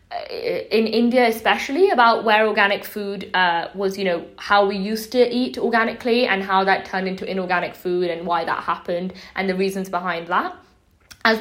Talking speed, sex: 180 wpm, female